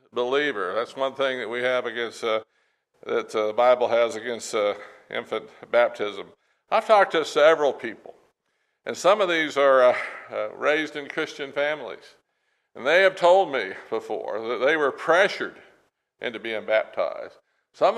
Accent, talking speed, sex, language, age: American, 160 wpm, male, English, 60-79